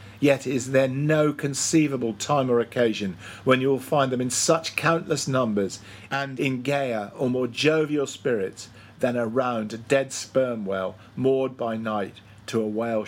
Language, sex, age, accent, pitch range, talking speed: English, male, 50-69, British, 110-140 Hz, 165 wpm